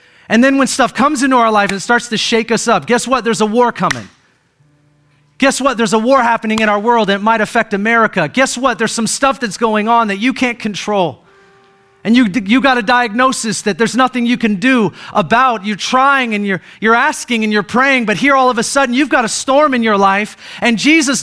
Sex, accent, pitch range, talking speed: male, American, 145-230 Hz, 230 wpm